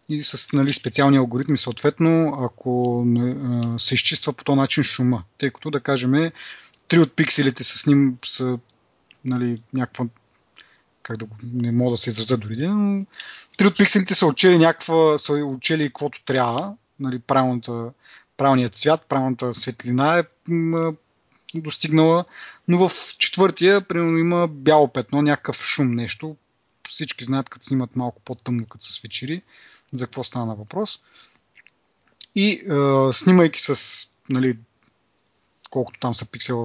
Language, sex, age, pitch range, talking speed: Bulgarian, male, 30-49, 125-155 Hz, 145 wpm